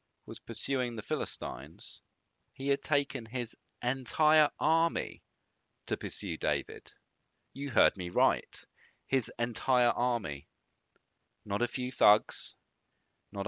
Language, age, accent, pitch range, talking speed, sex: English, 40-59, British, 95-125 Hz, 110 wpm, male